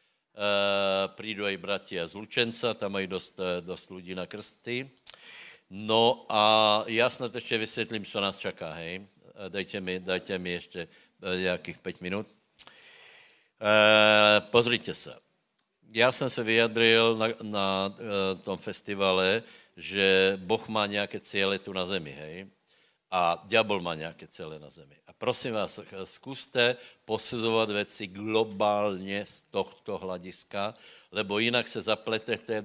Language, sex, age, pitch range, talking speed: Slovak, male, 60-79, 100-120 Hz, 130 wpm